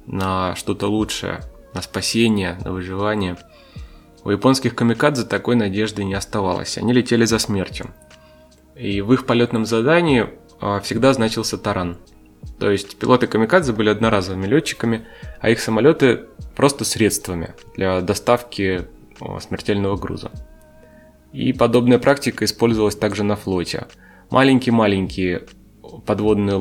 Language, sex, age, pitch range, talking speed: Russian, male, 20-39, 95-120 Hz, 115 wpm